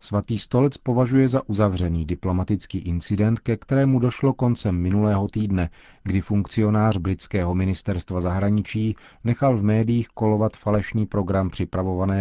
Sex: male